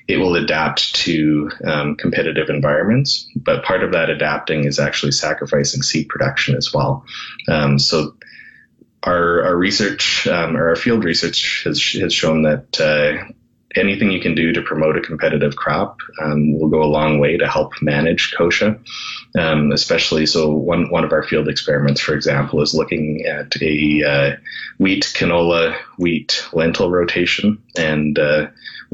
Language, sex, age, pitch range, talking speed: English, male, 30-49, 70-85 Hz, 155 wpm